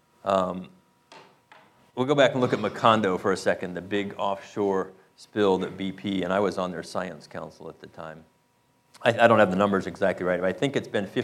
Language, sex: English, male